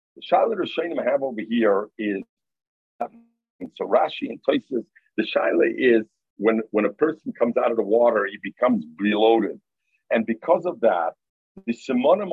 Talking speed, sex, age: 155 wpm, male, 50-69